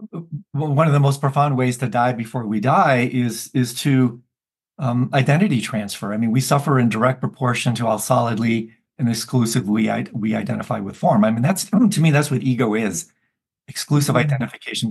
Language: English